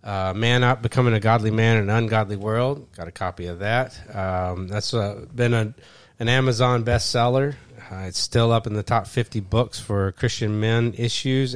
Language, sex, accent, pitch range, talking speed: English, male, American, 95-120 Hz, 190 wpm